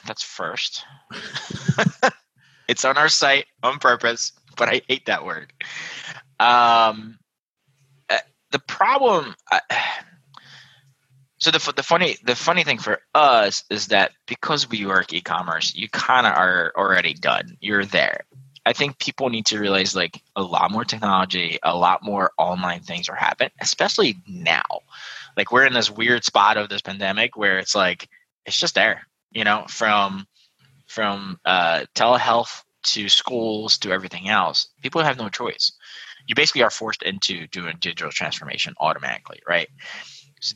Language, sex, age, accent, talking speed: English, male, 20-39, American, 150 wpm